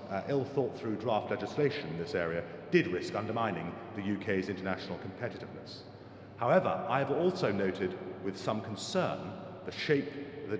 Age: 40-59